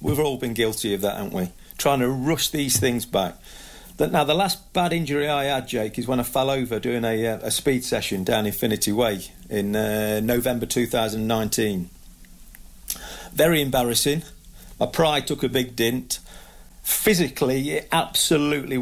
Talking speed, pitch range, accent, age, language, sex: 165 wpm, 110-140 Hz, British, 40-59, English, male